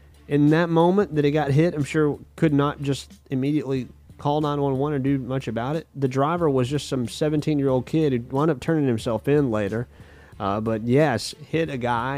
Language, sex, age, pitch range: English, male, 30-49, 115-150 Hz